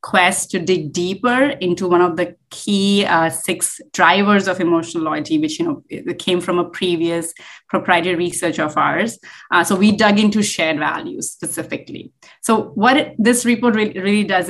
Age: 30-49